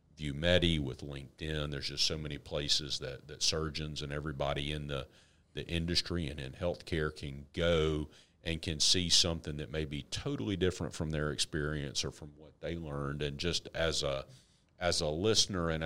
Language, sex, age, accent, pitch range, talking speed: English, male, 50-69, American, 75-85 Hz, 180 wpm